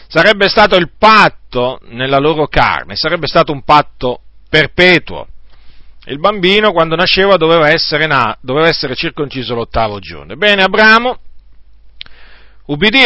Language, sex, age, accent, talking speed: Italian, male, 40-59, native, 125 wpm